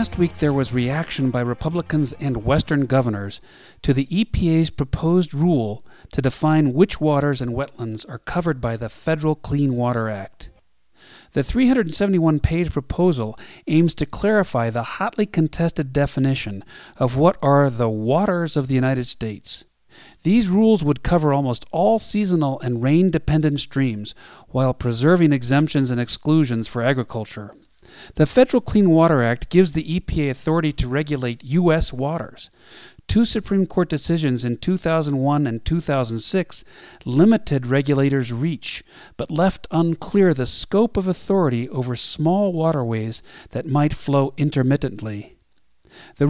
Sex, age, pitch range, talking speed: male, 40-59, 125-165 Hz, 135 wpm